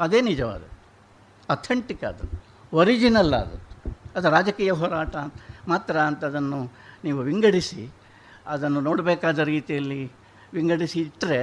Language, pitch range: Kannada, 120-170 Hz